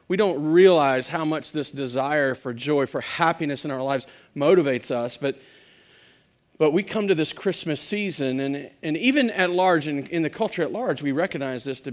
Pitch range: 130-165 Hz